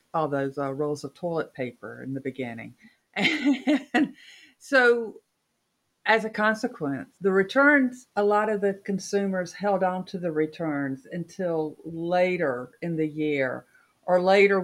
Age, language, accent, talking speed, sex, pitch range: 50-69, English, American, 140 wpm, female, 145-185 Hz